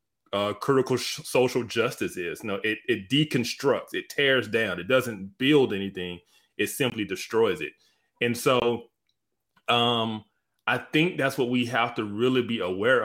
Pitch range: 110-140 Hz